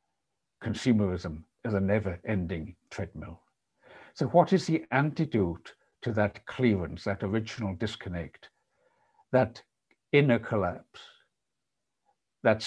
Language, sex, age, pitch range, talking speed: English, male, 60-79, 100-130 Hz, 95 wpm